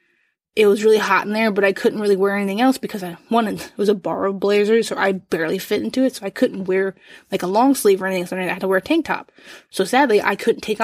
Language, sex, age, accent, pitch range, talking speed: English, female, 20-39, American, 190-225 Hz, 275 wpm